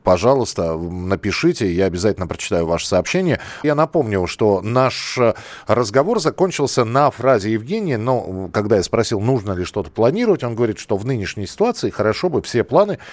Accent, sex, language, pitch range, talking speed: native, male, Russian, 100-150 Hz, 155 wpm